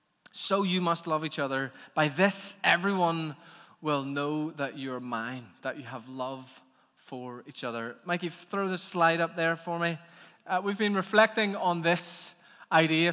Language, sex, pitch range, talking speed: English, male, 140-170 Hz, 165 wpm